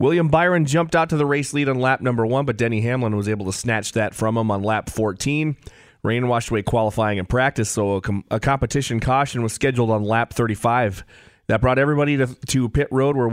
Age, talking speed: 30-49, 215 wpm